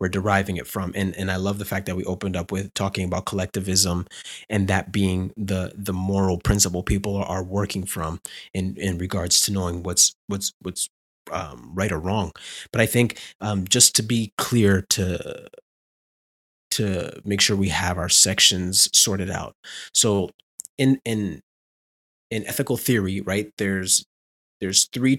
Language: English